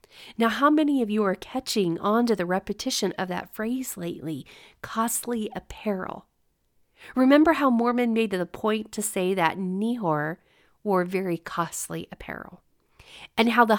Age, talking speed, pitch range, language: 40-59, 150 wpm, 200-260 Hz, English